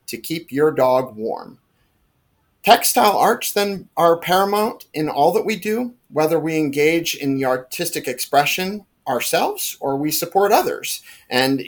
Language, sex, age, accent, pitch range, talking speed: English, male, 40-59, American, 135-175 Hz, 145 wpm